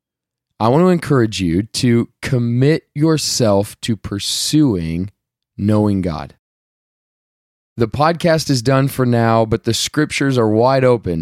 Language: English